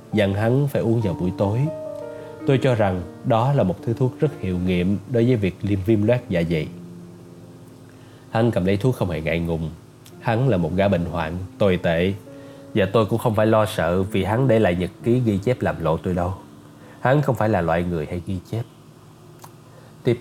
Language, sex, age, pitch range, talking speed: Vietnamese, male, 20-39, 95-125 Hz, 210 wpm